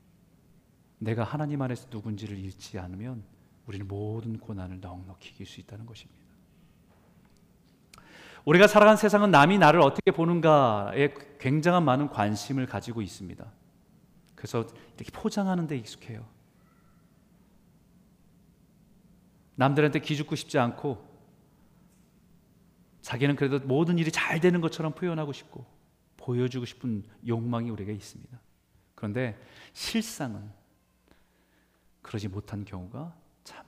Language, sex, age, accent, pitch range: Korean, male, 40-59, native, 95-145 Hz